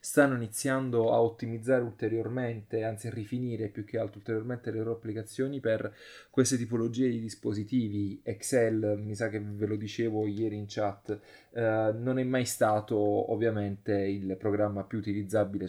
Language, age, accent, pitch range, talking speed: Italian, 20-39, native, 100-115 Hz, 155 wpm